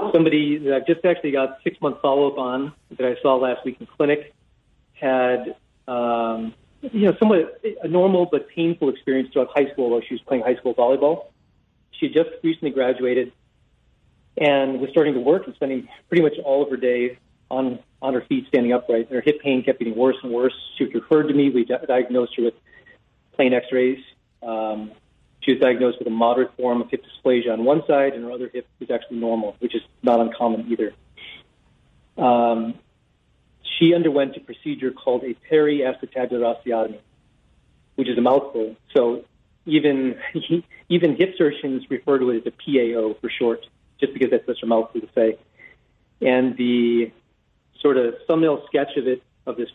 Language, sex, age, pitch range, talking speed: English, male, 40-59, 120-145 Hz, 180 wpm